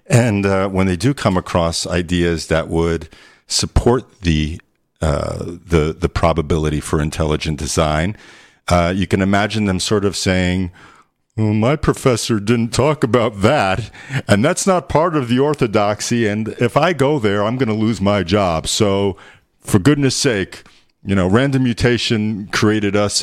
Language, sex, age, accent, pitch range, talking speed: English, male, 50-69, American, 85-110 Hz, 160 wpm